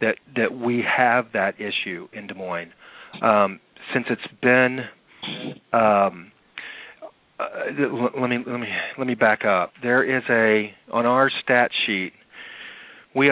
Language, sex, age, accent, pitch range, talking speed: English, male, 40-59, American, 100-115 Hz, 140 wpm